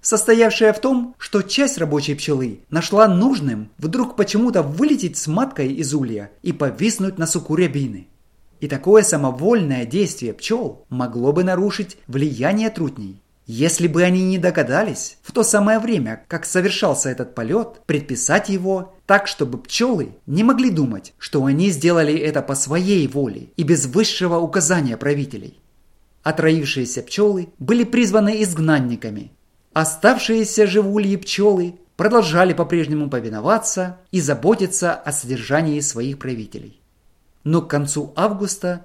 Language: English